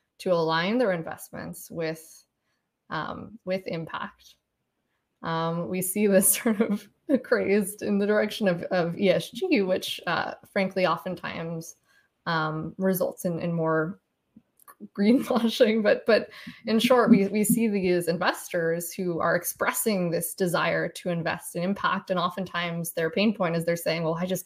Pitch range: 170-200 Hz